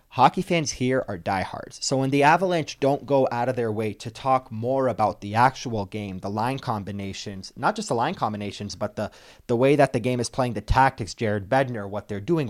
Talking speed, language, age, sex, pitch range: 220 wpm, English, 30-49, male, 105-135 Hz